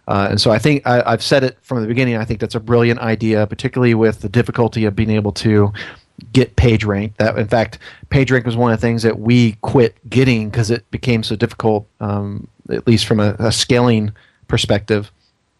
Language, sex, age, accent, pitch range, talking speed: English, male, 30-49, American, 105-120 Hz, 215 wpm